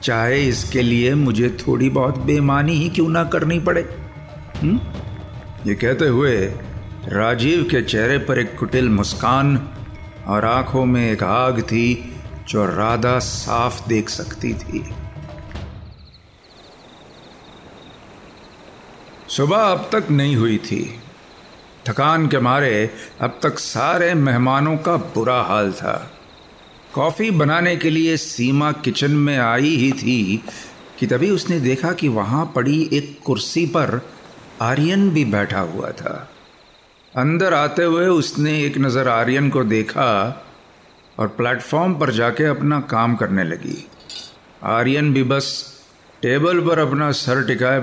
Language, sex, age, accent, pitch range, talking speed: Hindi, male, 50-69, native, 115-155 Hz, 130 wpm